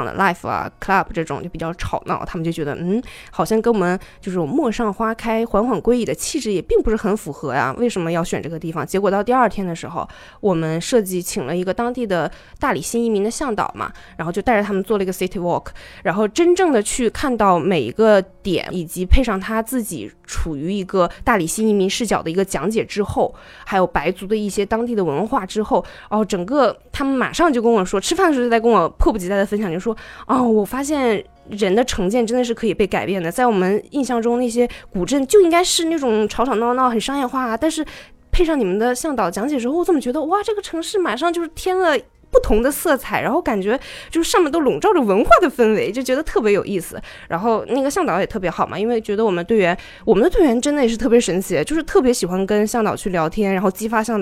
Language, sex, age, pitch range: Chinese, female, 20-39, 190-255 Hz